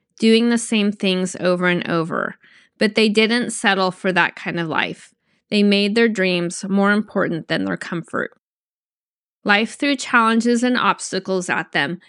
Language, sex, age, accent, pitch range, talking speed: English, female, 20-39, American, 195-235 Hz, 160 wpm